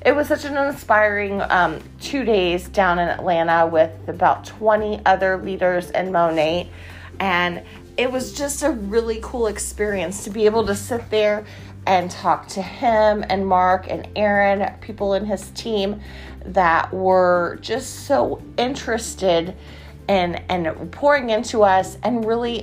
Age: 30-49